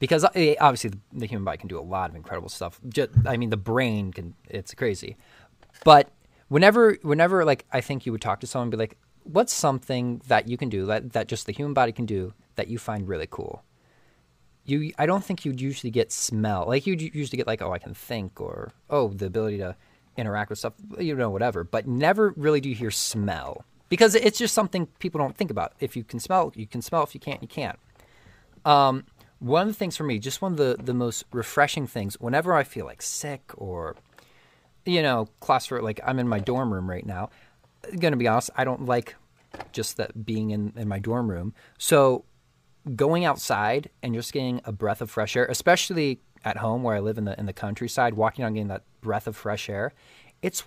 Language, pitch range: English, 105-145 Hz